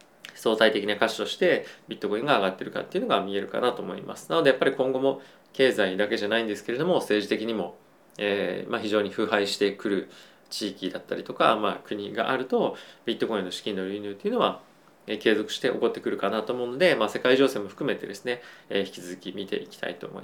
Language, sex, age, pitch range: Japanese, male, 20-39, 100-130 Hz